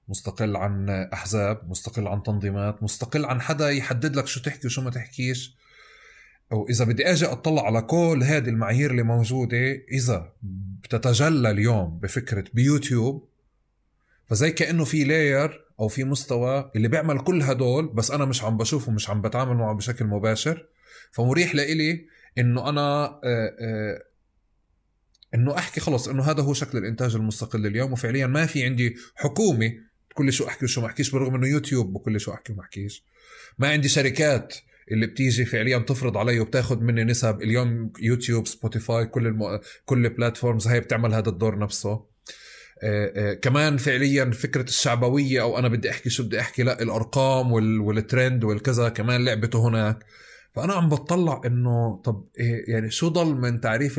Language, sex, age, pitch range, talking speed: Arabic, male, 30-49, 110-140 Hz, 160 wpm